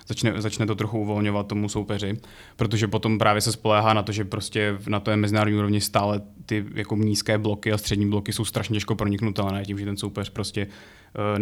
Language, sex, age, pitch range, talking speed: Czech, male, 20-39, 105-115 Hz, 205 wpm